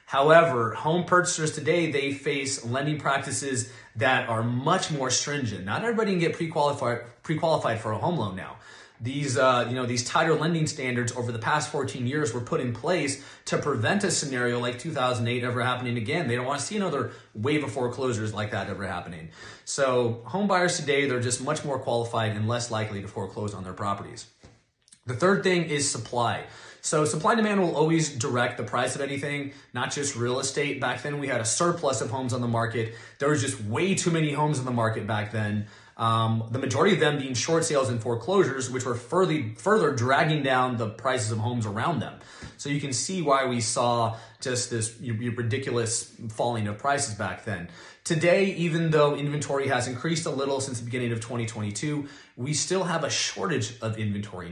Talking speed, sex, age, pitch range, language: 195 wpm, male, 30-49, 115-150 Hz, English